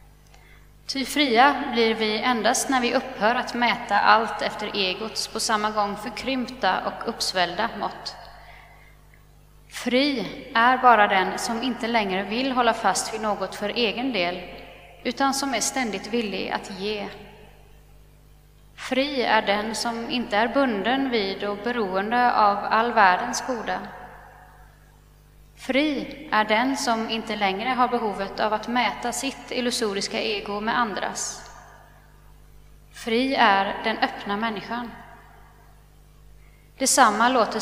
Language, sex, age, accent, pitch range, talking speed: Swedish, female, 30-49, native, 210-250 Hz, 125 wpm